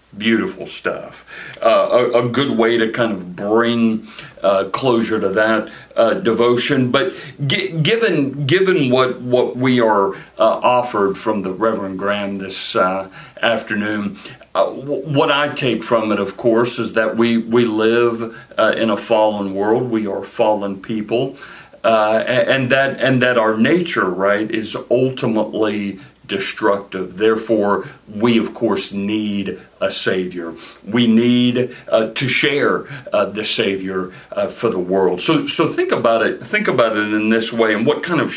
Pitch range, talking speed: 100-120 Hz, 160 wpm